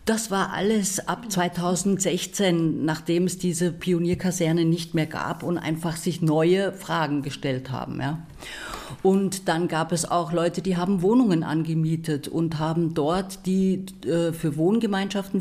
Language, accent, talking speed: German, German, 140 wpm